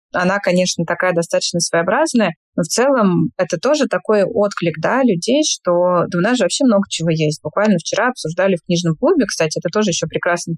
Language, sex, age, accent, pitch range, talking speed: Russian, female, 20-39, native, 170-215 Hz, 180 wpm